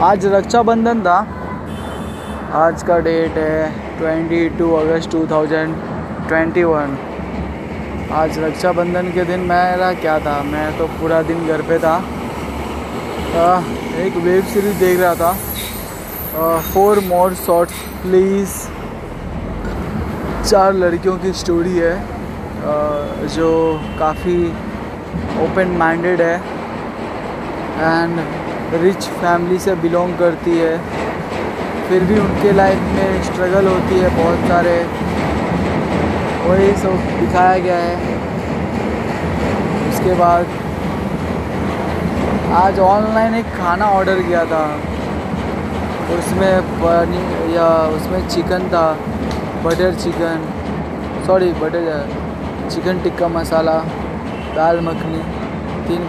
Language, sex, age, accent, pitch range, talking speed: Hindi, male, 20-39, native, 160-185 Hz, 105 wpm